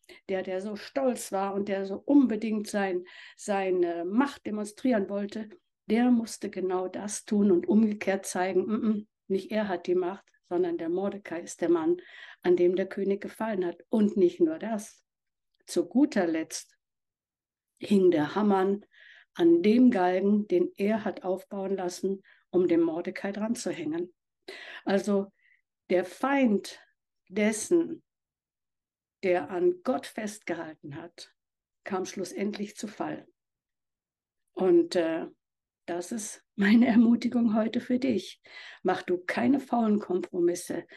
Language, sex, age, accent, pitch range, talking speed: German, female, 60-79, German, 180-240 Hz, 135 wpm